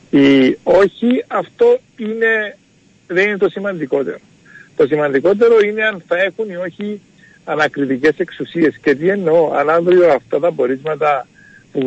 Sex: male